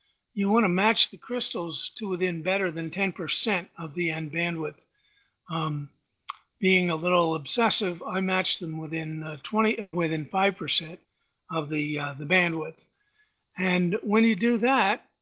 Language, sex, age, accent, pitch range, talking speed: English, male, 50-69, American, 160-200 Hz, 150 wpm